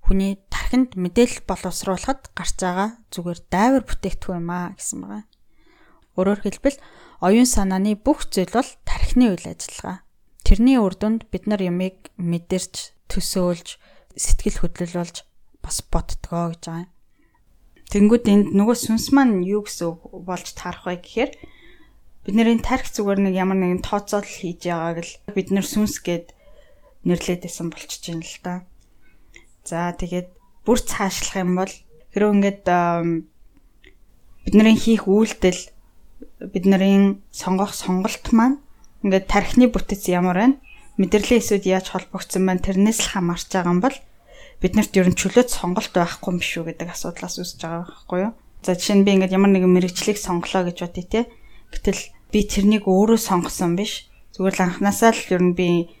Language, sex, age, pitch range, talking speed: Russian, female, 20-39, 180-210 Hz, 95 wpm